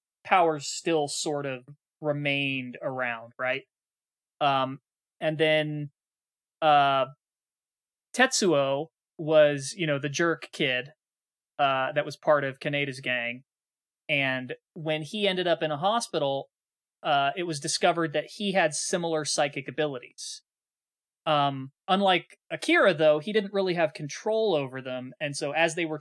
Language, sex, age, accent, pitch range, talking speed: English, male, 20-39, American, 135-165 Hz, 135 wpm